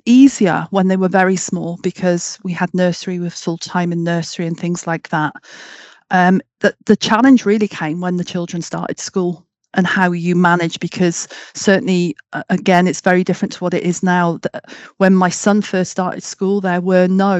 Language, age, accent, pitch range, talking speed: English, 40-59, British, 170-190 Hz, 185 wpm